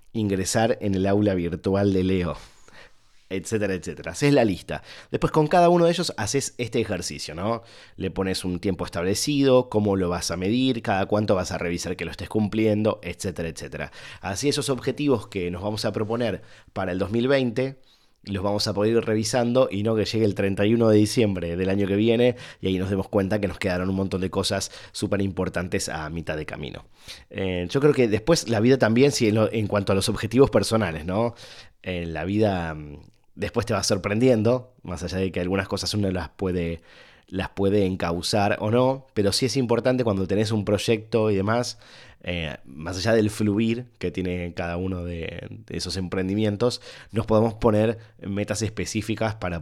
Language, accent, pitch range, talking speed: Spanish, Argentinian, 95-115 Hz, 190 wpm